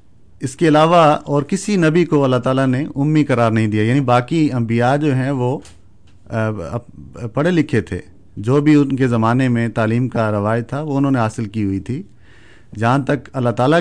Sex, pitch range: male, 115-145 Hz